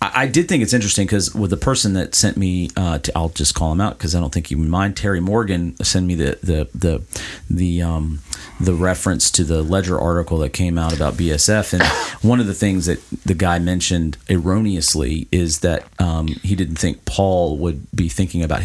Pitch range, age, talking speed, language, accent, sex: 85-110 Hz, 40-59, 210 wpm, English, American, male